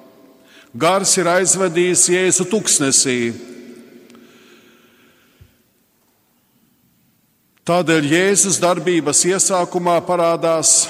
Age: 50-69